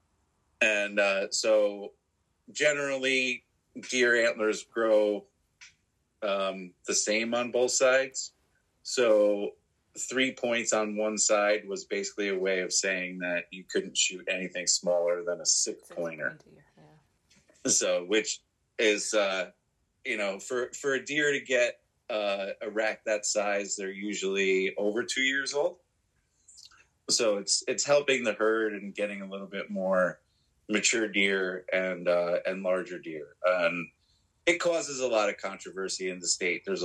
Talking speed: 140 wpm